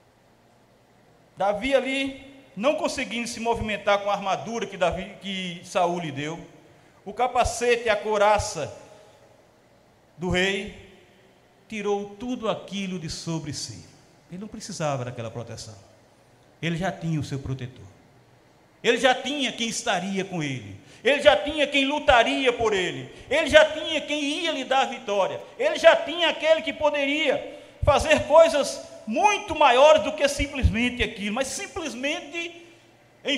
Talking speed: 140 wpm